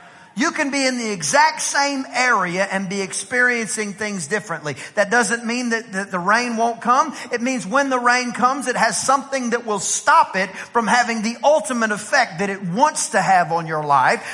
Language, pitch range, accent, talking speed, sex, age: English, 200-270 Hz, American, 195 wpm, male, 40-59